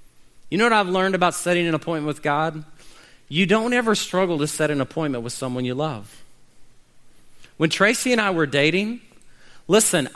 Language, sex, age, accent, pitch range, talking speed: English, male, 40-59, American, 140-190 Hz, 175 wpm